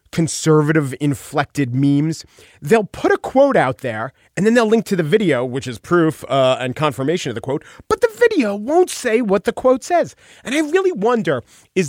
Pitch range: 135-225 Hz